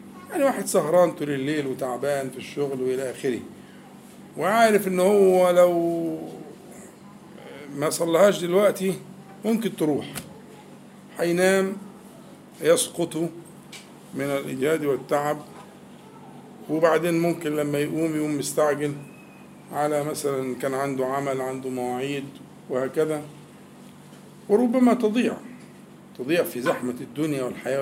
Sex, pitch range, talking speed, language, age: male, 140-195 Hz, 95 wpm, Arabic, 50-69